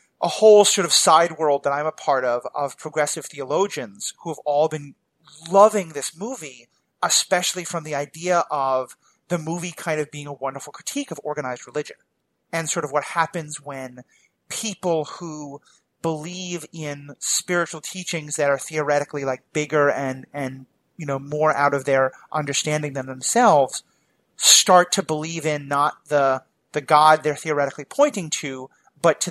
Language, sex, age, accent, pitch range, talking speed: English, male, 30-49, American, 140-175 Hz, 160 wpm